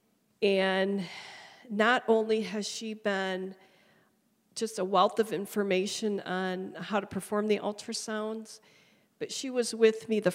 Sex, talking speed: female, 135 wpm